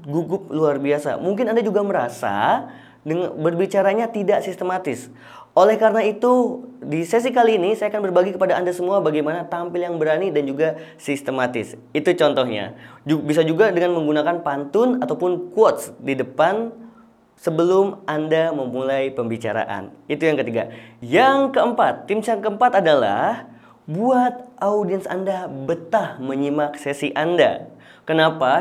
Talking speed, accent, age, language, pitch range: 130 wpm, native, 20-39, Indonesian, 150-205 Hz